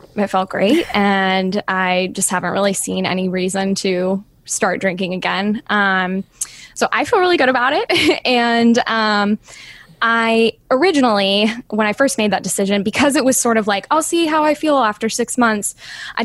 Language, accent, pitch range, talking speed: English, American, 195-235 Hz, 175 wpm